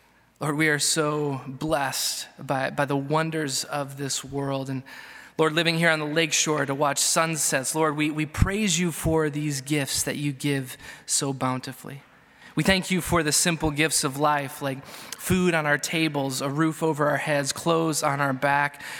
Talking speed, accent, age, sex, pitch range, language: 185 wpm, American, 20-39, male, 140-160 Hz, English